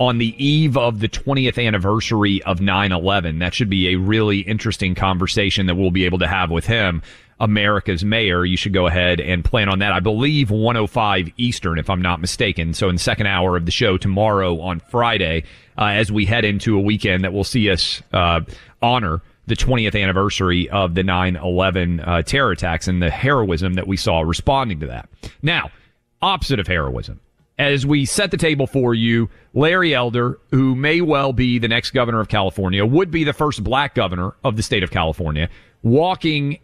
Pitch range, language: 95-125 Hz, English